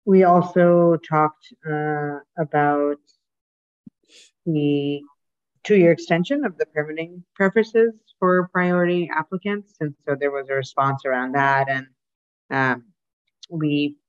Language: English